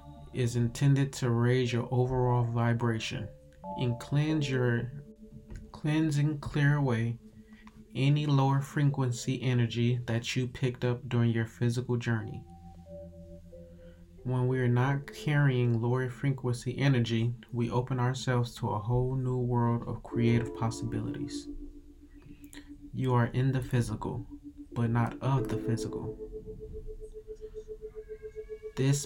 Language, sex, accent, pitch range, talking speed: English, male, American, 115-145 Hz, 115 wpm